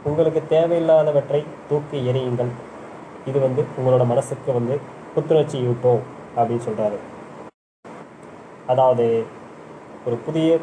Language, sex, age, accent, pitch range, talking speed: Tamil, male, 20-39, native, 120-150 Hz, 90 wpm